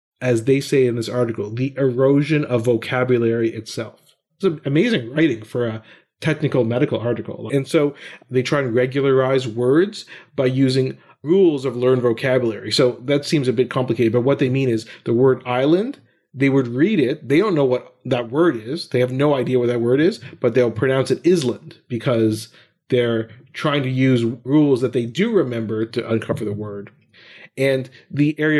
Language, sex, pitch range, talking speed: English, male, 120-145 Hz, 185 wpm